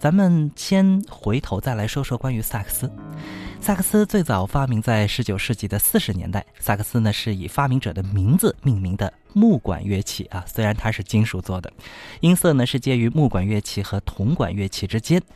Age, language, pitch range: 20-39, Chinese, 100-145 Hz